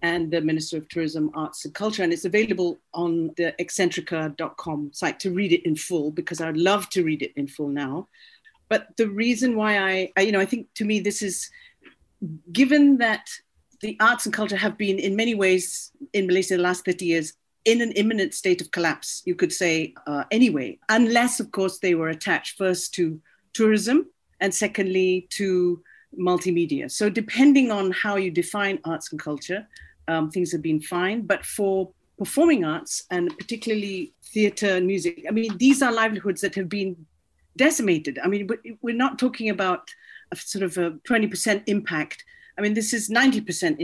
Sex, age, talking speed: female, 40-59, 180 wpm